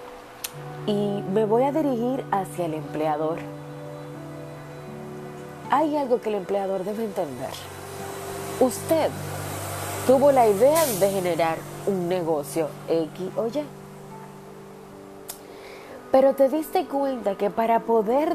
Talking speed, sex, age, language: 110 wpm, female, 30-49, Spanish